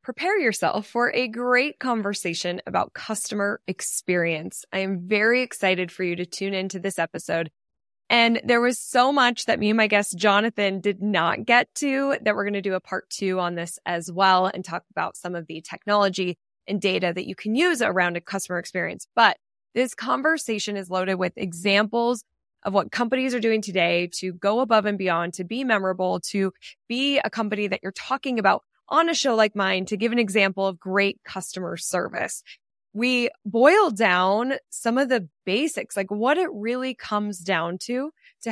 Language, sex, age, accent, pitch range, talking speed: English, female, 20-39, American, 190-245 Hz, 185 wpm